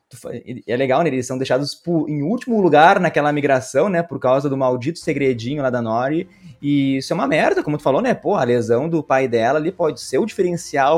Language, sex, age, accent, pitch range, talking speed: Portuguese, male, 20-39, Brazilian, 130-170 Hz, 220 wpm